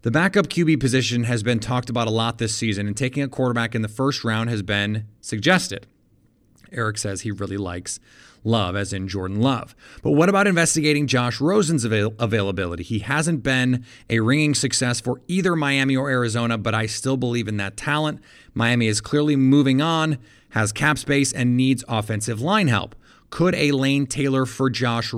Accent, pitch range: American, 110-140 Hz